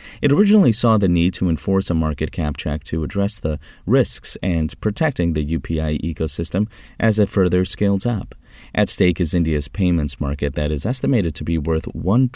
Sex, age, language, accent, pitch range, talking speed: male, 30-49, English, American, 80-105 Hz, 185 wpm